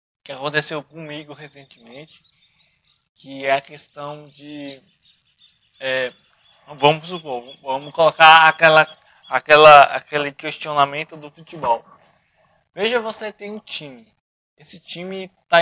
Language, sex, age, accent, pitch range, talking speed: Portuguese, male, 20-39, Brazilian, 145-170 Hz, 110 wpm